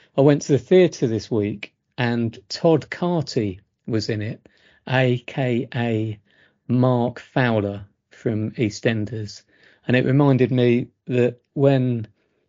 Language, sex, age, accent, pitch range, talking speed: English, male, 40-59, British, 105-125 Hz, 115 wpm